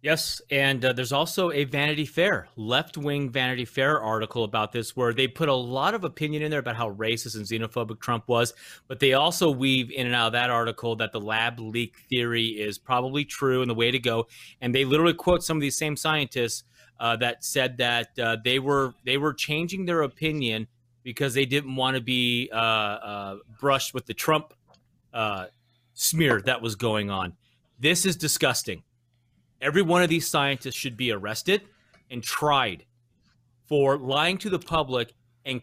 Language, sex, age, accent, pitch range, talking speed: English, male, 30-49, American, 120-160 Hz, 185 wpm